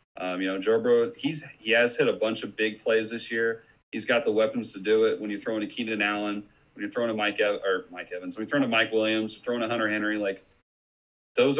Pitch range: 105-135 Hz